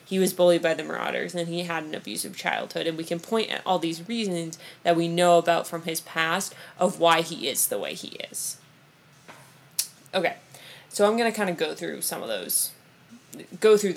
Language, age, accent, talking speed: English, 20-39, American, 210 wpm